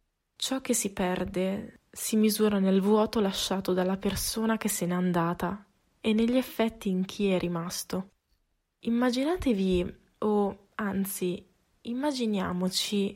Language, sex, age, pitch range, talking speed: Italian, female, 20-39, 185-225 Hz, 120 wpm